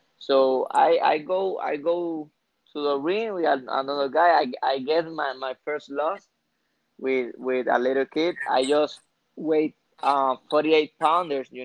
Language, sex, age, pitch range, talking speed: English, male, 20-39, 135-165 Hz, 165 wpm